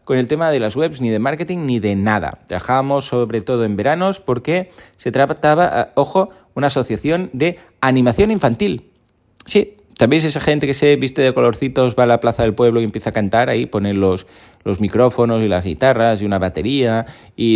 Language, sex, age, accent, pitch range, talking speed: Spanish, male, 30-49, Spanish, 110-155 Hz, 195 wpm